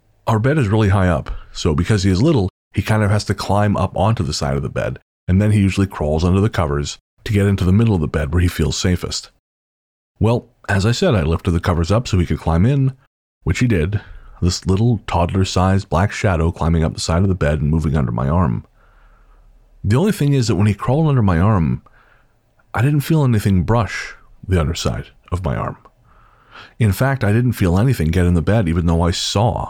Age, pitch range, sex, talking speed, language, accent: 30-49, 85-110 Hz, male, 230 wpm, English, American